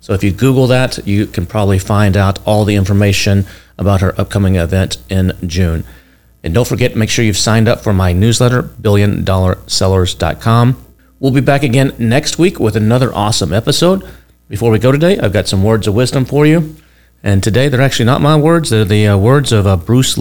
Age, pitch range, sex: 40-59, 90-120 Hz, male